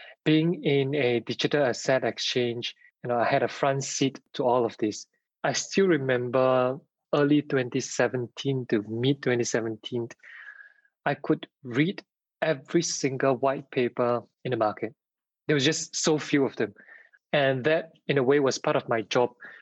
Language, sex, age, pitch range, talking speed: English, male, 20-39, 120-145 Hz, 160 wpm